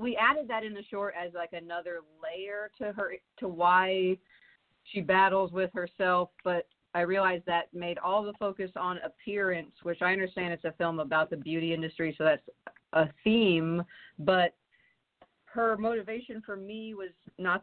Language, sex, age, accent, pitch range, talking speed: English, female, 40-59, American, 165-195 Hz, 165 wpm